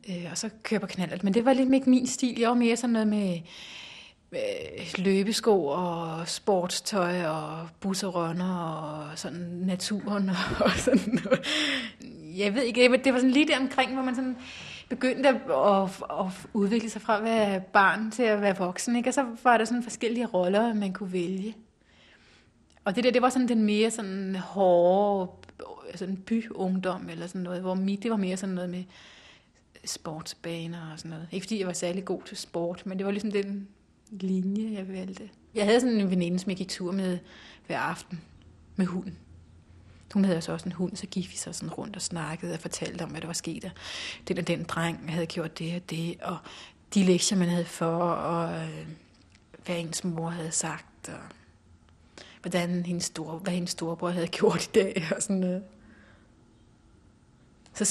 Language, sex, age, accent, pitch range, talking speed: Danish, female, 30-49, native, 170-215 Hz, 185 wpm